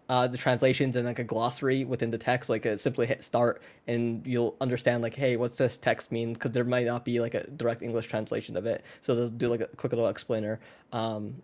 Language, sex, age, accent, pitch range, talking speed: English, male, 20-39, American, 120-145 Hz, 235 wpm